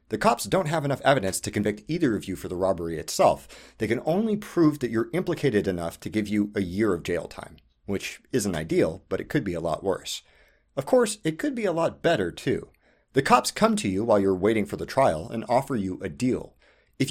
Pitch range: 105-160 Hz